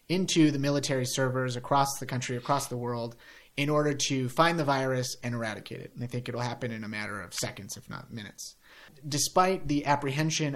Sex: male